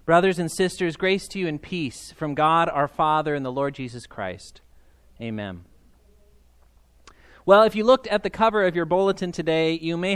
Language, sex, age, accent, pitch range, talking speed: English, male, 30-49, American, 140-195 Hz, 185 wpm